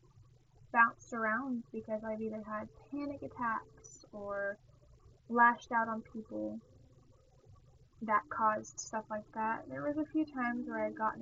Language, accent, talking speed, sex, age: English, American, 145 wpm, female, 10-29